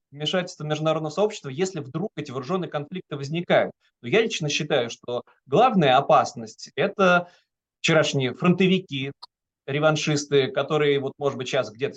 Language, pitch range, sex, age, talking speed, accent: Russian, 130-180 Hz, male, 30-49, 135 wpm, native